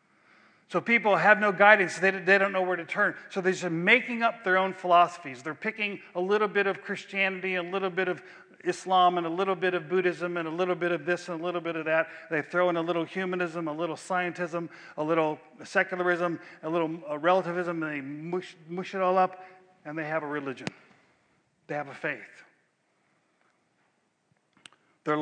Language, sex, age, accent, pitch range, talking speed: English, male, 50-69, American, 165-185 Hz, 195 wpm